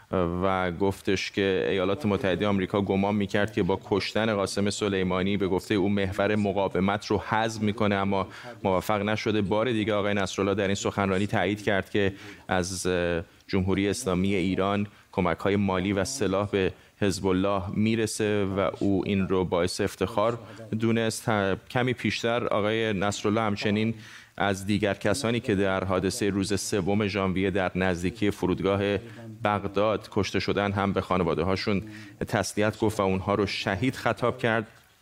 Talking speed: 145 wpm